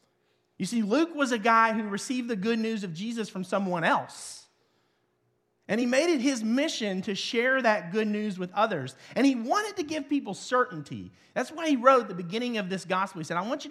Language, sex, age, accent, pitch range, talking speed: English, male, 40-59, American, 165-255 Hz, 220 wpm